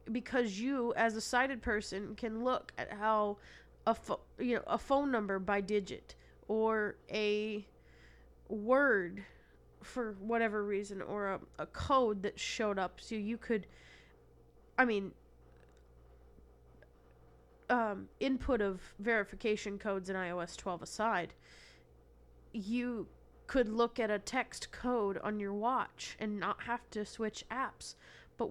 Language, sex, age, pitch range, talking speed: English, female, 20-39, 195-240 Hz, 125 wpm